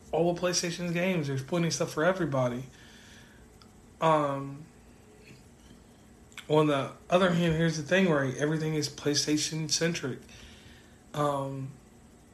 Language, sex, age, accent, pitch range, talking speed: English, male, 20-39, American, 125-155 Hz, 115 wpm